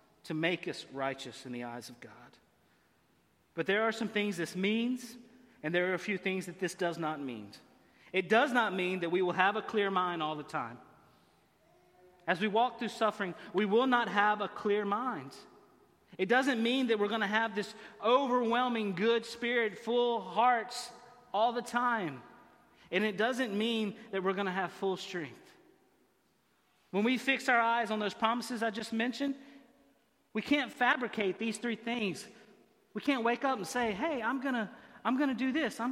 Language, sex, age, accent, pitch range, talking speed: English, male, 30-49, American, 195-250 Hz, 185 wpm